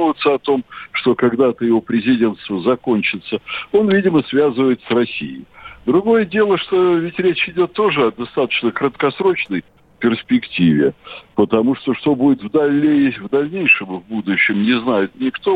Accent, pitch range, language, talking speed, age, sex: native, 125-190 Hz, Russian, 140 wpm, 60-79, male